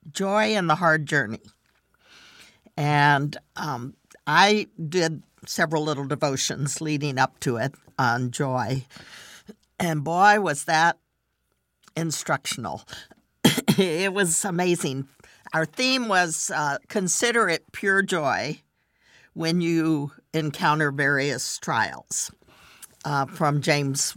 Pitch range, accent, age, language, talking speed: 150-200 Hz, American, 50-69, English, 105 wpm